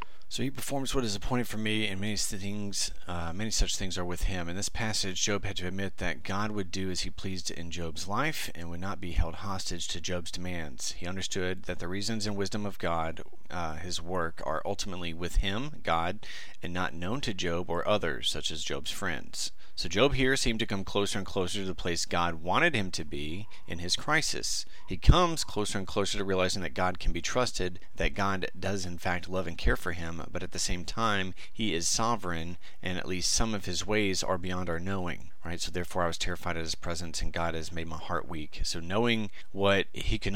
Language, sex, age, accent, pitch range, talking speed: English, male, 30-49, American, 85-100 Hz, 230 wpm